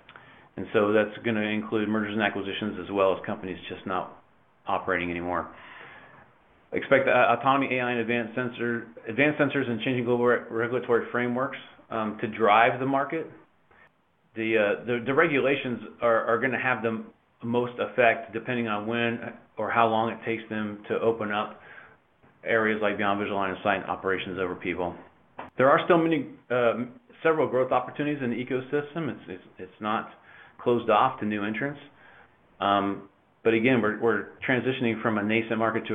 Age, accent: 40-59, American